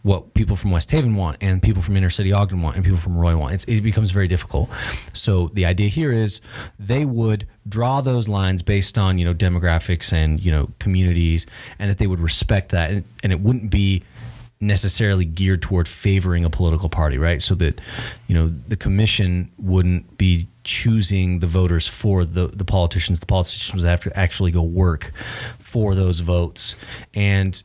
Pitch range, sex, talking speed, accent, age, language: 90-110 Hz, male, 185 wpm, American, 30-49, English